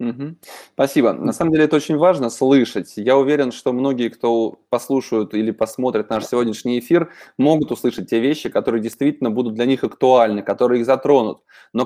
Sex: male